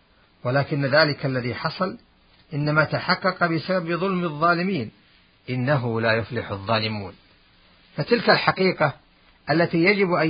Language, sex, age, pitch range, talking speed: Arabic, male, 50-69, 125-160 Hz, 105 wpm